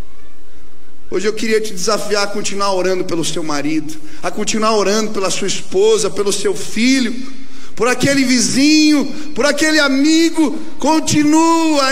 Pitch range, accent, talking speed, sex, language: 165-275 Hz, Brazilian, 135 wpm, male, Portuguese